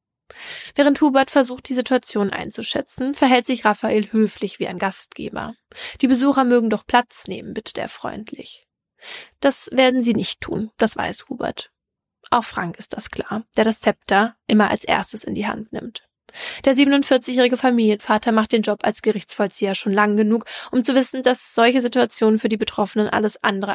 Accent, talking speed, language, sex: German, 170 wpm, German, female